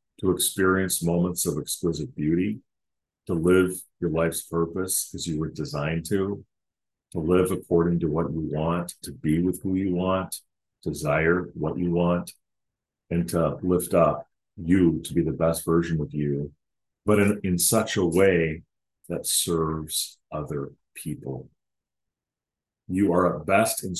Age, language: 40-59, English